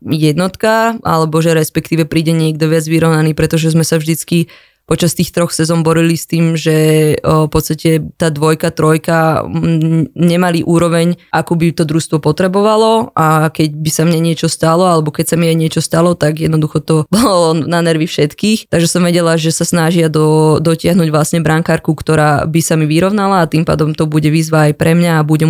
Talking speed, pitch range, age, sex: 185 wpm, 160-175 Hz, 20-39, female